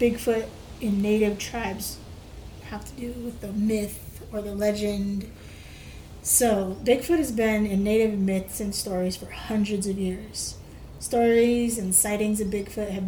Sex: female